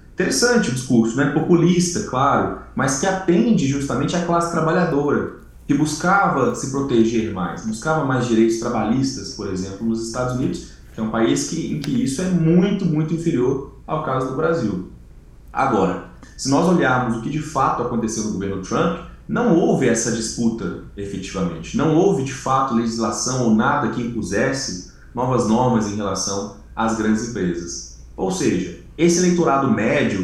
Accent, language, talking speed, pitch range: Brazilian, Portuguese, 165 wpm, 110-150 Hz